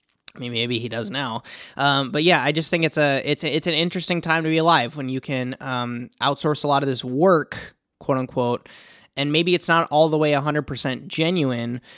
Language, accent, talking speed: English, American, 230 wpm